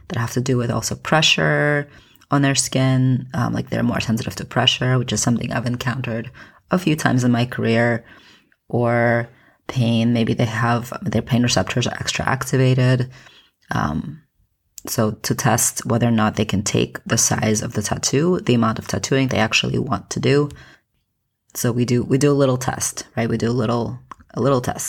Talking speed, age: 190 wpm, 20-39